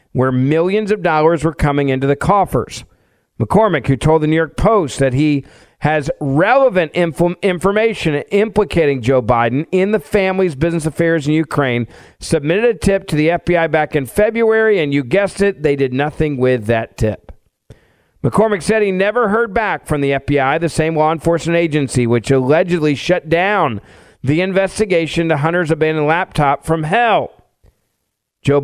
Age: 50-69